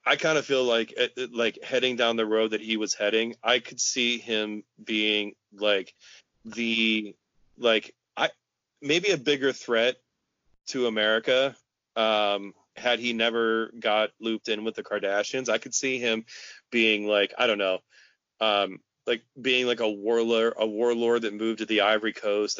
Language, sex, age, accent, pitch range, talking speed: English, male, 30-49, American, 105-120 Hz, 165 wpm